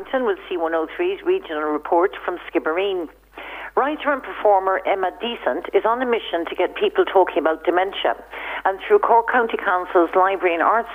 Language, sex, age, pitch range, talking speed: English, female, 50-69, 165-230 Hz, 165 wpm